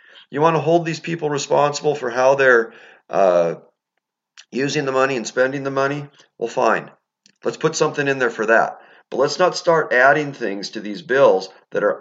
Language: English